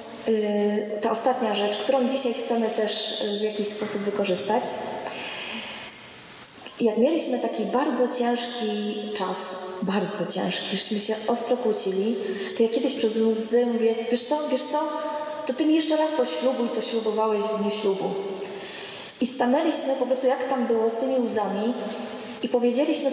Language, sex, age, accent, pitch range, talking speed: Polish, female, 20-39, native, 215-250 Hz, 150 wpm